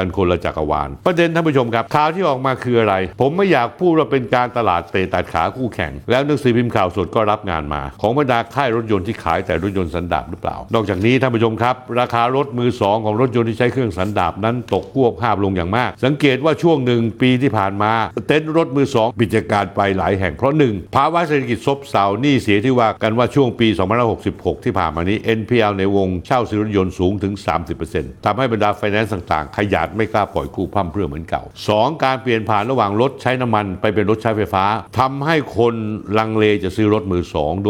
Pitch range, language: 95-125 Hz, Thai